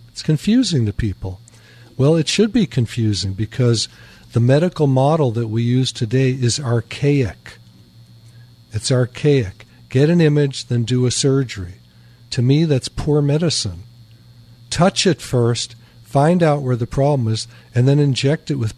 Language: English